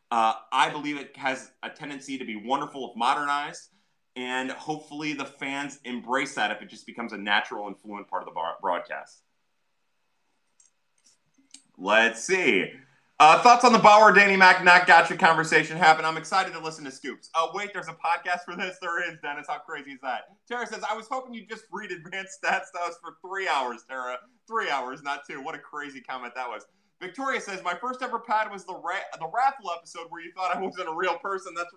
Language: English